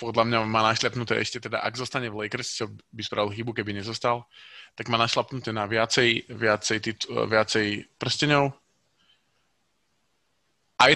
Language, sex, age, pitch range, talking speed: Slovak, male, 20-39, 110-120 Hz, 135 wpm